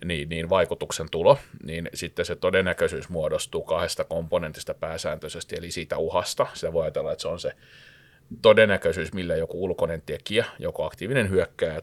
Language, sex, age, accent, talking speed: Finnish, male, 30-49, native, 150 wpm